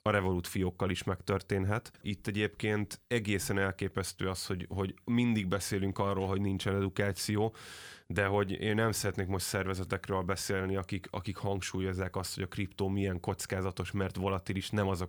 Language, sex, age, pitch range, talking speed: Hungarian, male, 20-39, 95-105 Hz, 160 wpm